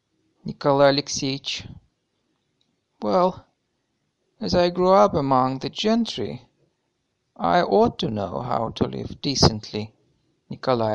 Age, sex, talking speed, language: 50-69, male, 105 wpm, Russian